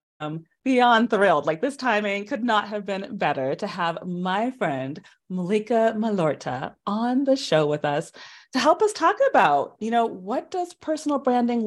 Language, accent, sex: English, American, female